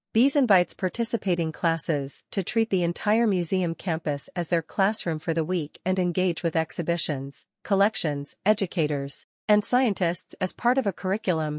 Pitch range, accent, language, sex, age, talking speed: 165-200 Hz, American, English, female, 40-59, 150 wpm